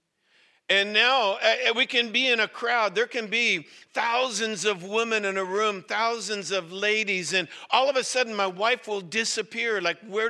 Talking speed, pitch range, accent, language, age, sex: 185 wpm, 155-205 Hz, American, English, 50-69, male